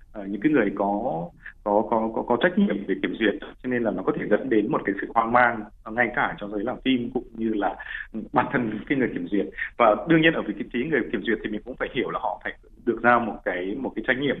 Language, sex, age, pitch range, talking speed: Vietnamese, male, 20-39, 105-130 Hz, 275 wpm